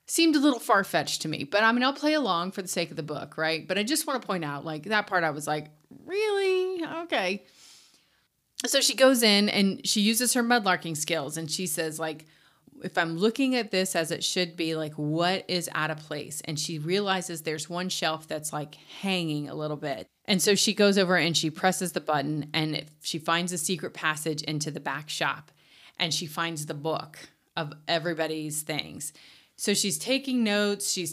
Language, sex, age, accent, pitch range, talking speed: English, female, 30-49, American, 160-215 Hz, 210 wpm